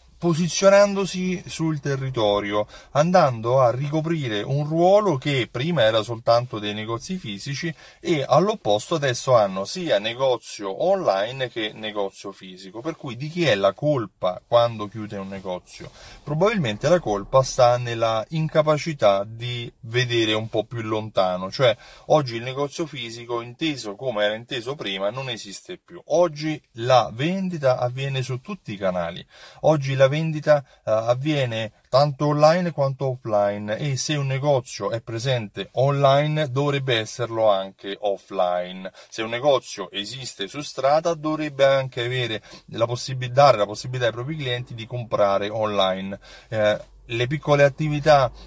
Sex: male